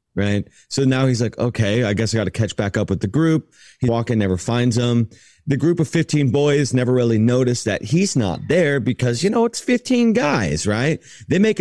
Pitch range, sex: 95-125 Hz, male